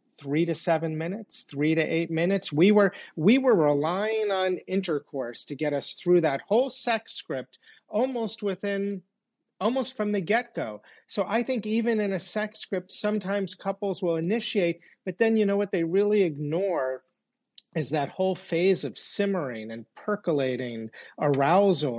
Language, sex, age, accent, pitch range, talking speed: English, male, 40-59, American, 145-200 Hz, 160 wpm